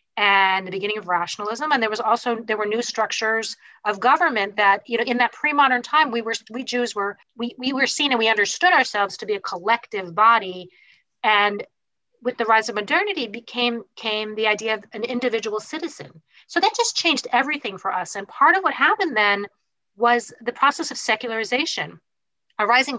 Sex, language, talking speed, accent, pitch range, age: female, English, 190 wpm, American, 215-275 Hz, 40-59